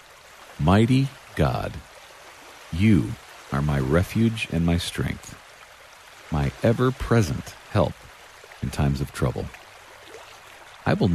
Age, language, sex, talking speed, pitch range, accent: 50-69, English, male, 95 wpm, 75-115 Hz, American